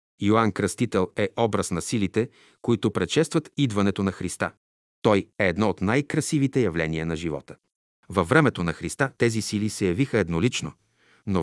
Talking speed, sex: 150 wpm, male